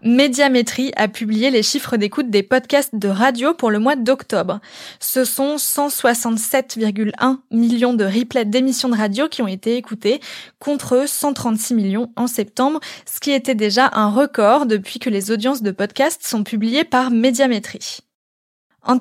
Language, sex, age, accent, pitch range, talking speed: French, female, 20-39, French, 215-265 Hz, 155 wpm